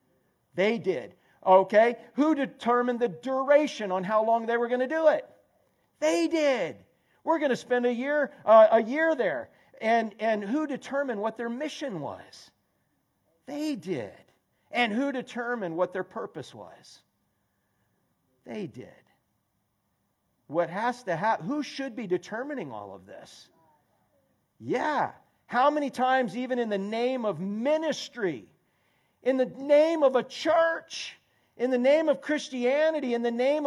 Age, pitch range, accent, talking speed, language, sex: 50-69, 230-290 Hz, American, 145 wpm, English, male